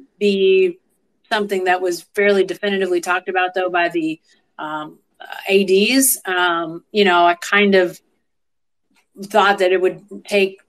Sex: female